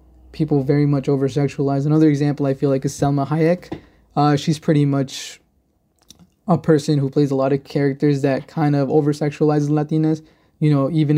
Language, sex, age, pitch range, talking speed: English, male, 20-39, 135-155 Hz, 170 wpm